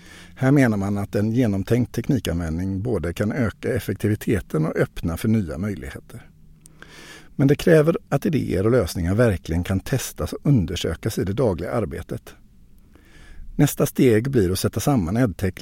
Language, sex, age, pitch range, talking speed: Swedish, male, 50-69, 95-125 Hz, 150 wpm